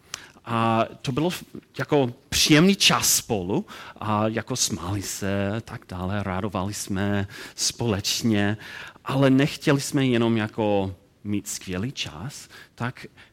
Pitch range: 105-145 Hz